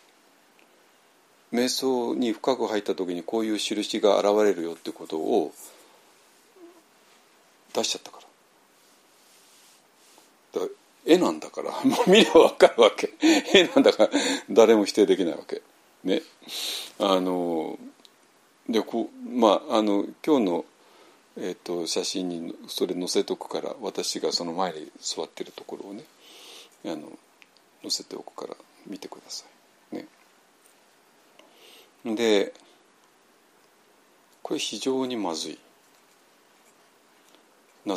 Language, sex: Japanese, male